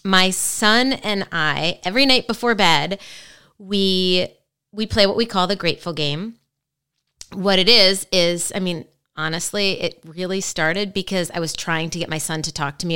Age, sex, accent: 30-49, female, American